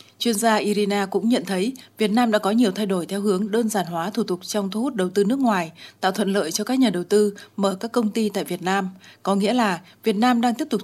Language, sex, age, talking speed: Vietnamese, female, 20-39, 275 wpm